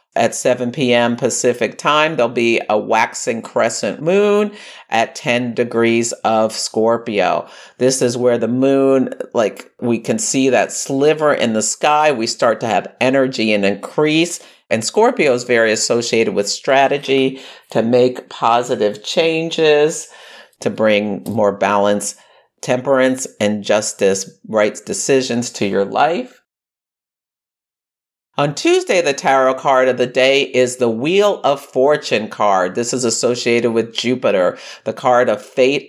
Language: English